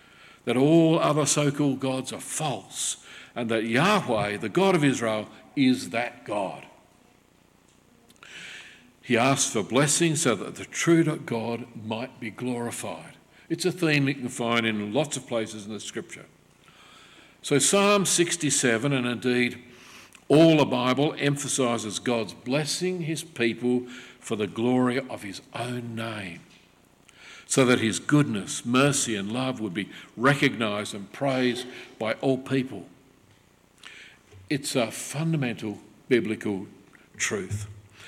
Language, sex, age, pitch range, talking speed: English, male, 50-69, 115-140 Hz, 130 wpm